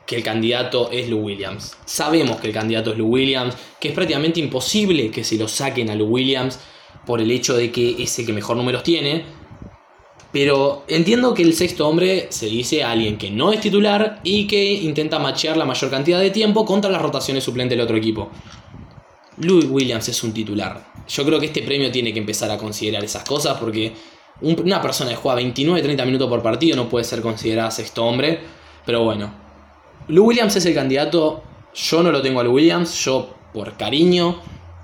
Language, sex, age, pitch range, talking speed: Spanish, male, 20-39, 120-165 Hz, 195 wpm